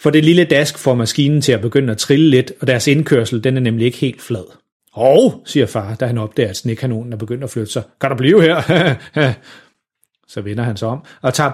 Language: Danish